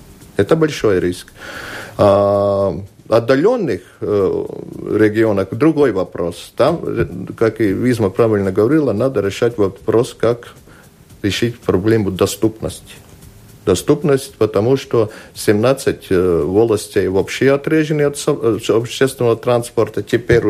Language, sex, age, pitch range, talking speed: Russian, male, 50-69, 105-135 Hz, 95 wpm